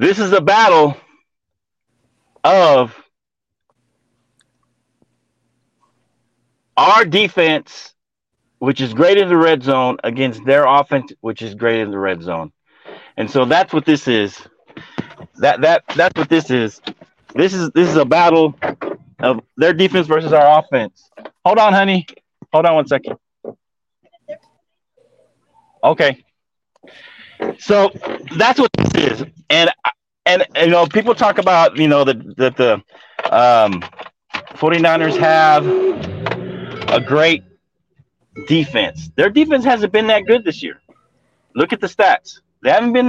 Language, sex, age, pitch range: English, male, 30-49, 140-195 Hz